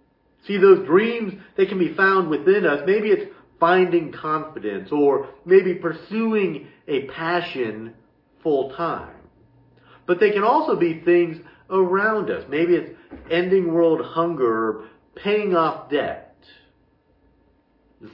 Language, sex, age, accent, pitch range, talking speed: English, male, 50-69, American, 150-245 Hz, 120 wpm